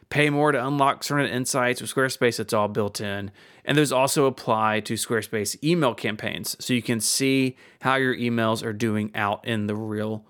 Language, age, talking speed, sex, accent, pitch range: English, 30-49, 190 wpm, male, American, 110-140 Hz